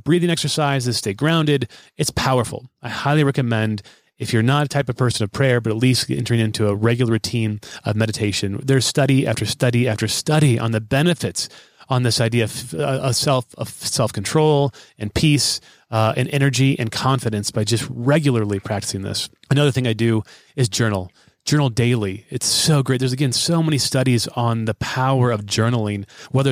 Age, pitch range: 30-49, 110-135 Hz